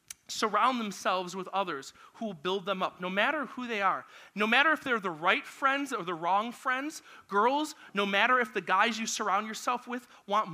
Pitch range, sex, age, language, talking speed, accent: 190-240 Hz, male, 30-49, English, 205 wpm, American